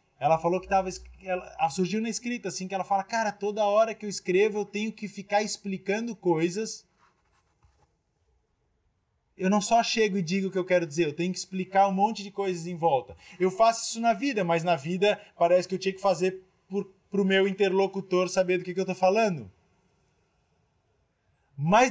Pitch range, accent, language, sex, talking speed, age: 180-230 Hz, Brazilian, Portuguese, male, 190 wpm, 20-39